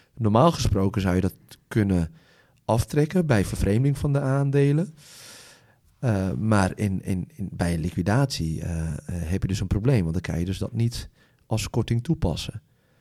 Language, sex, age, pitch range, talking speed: Dutch, male, 30-49, 95-125 Hz, 165 wpm